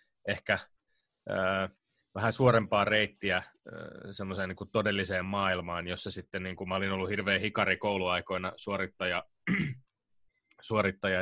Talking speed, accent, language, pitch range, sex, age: 120 wpm, native, Finnish, 90-105 Hz, male, 20-39